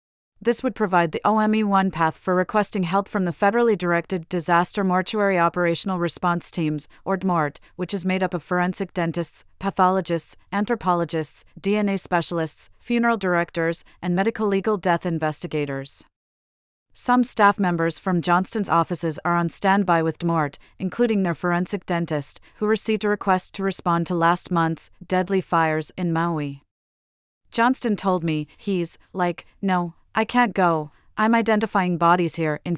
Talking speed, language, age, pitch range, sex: 145 wpm, English, 40-59, 165-200 Hz, female